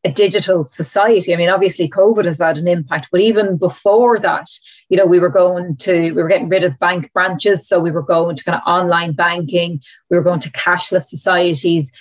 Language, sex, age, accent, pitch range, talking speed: English, female, 30-49, Irish, 175-205 Hz, 215 wpm